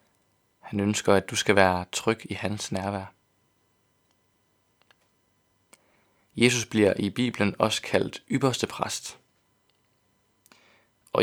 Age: 20-39